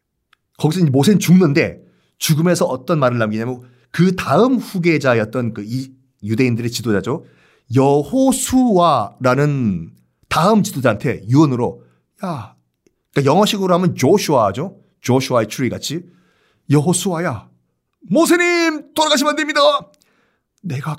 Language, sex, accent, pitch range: Korean, male, native, 125-195 Hz